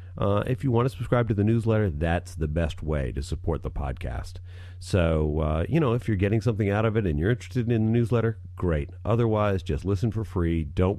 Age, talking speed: 40-59, 225 wpm